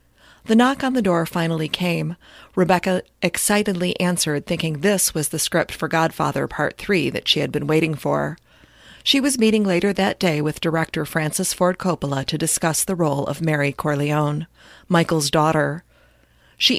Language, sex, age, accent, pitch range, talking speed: English, female, 40-59, American, 155-190 Hz, 165 wpm